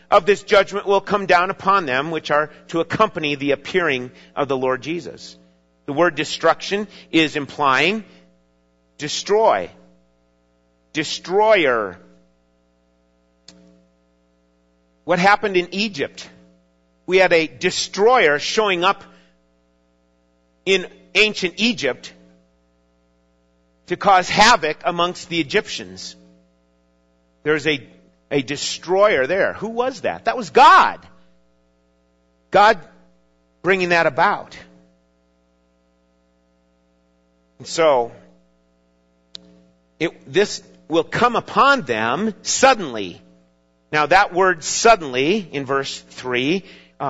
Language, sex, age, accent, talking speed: English, male, 50-69, American, 95 wpm